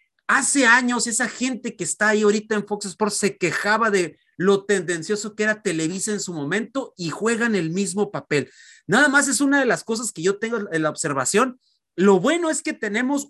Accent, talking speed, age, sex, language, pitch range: Mexican, 205 wpm, 40-59, male, Spanish, 175-240 Hz